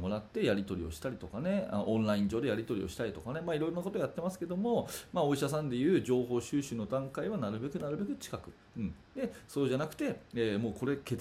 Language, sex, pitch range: Japanese, male, 105-145 Hz